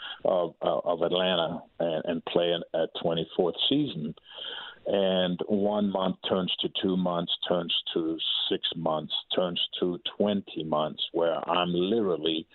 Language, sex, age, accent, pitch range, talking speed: English, male, 50-69, American, 85-100 Hz, 135 wpm